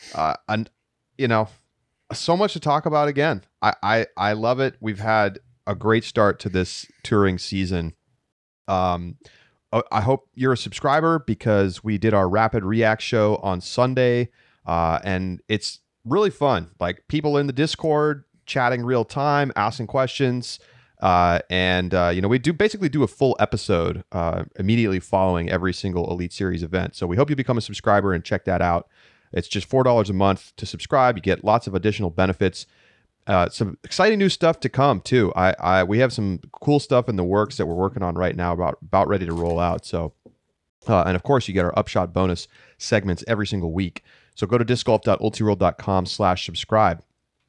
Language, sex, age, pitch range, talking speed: English, male, 30-49, 95-130 Hz, 185 wpm